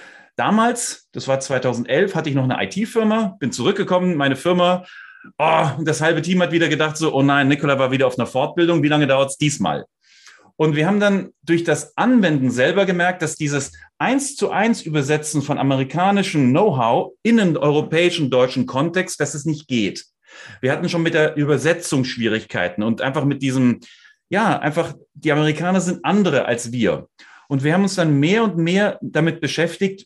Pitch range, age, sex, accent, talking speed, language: 140-190 Hz, 30-49, male, German, 180 wpm, German